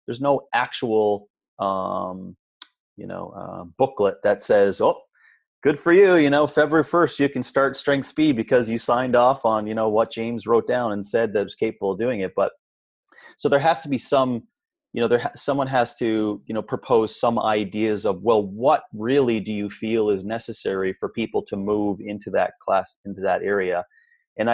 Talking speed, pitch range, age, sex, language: 200 wpm, 100-140 Hz, 30-49, male, English